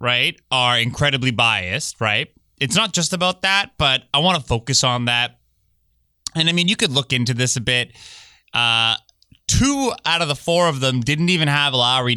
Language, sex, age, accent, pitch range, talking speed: English, male, 20-39, American, 110-170 Hz, 190 wpm